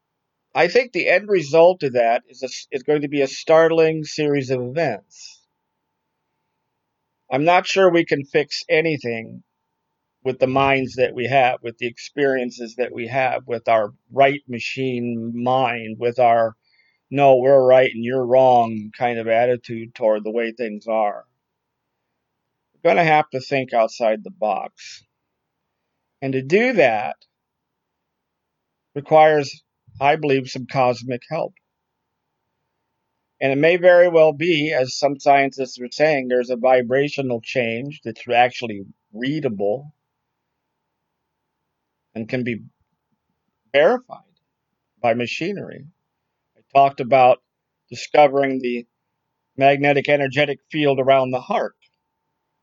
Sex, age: male, 50-69